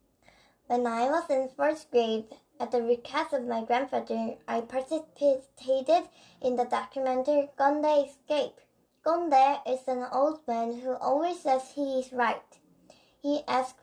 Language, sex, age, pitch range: Korean, male, 10-29, 245-310 Hz